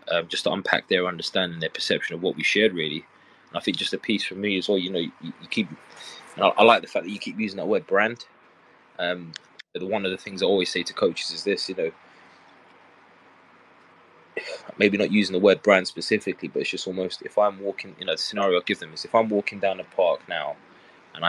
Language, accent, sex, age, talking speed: English, British, male, 20-39, 240 wpm